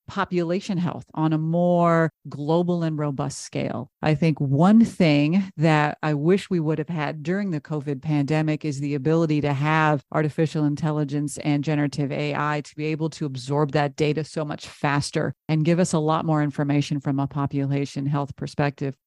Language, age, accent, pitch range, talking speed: English, 40-59, American, 145-160 Hz, 175 wpm